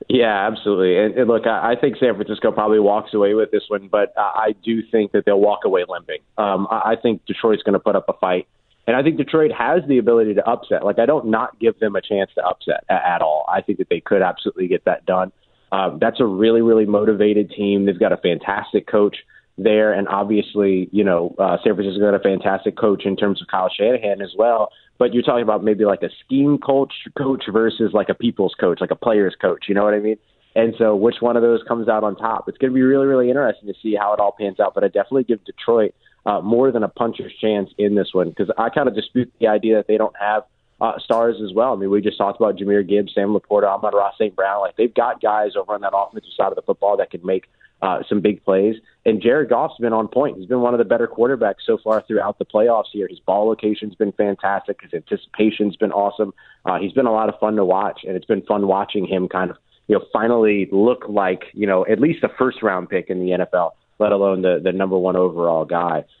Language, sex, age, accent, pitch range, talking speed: English, male, 30-49, American, 100-115 Hz, 255 wpm